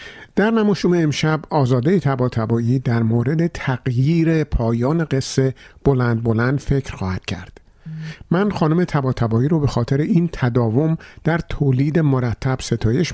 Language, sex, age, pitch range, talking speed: Persian, male, 50-69, 120-160 Hz, 125 wpm